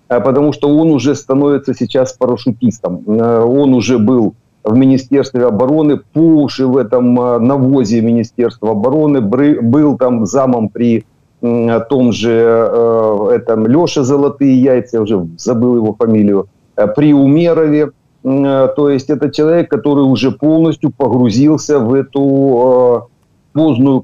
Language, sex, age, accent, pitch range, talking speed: Ukrainian, male, 50-69, native, 120-140 Hz, 115 wpm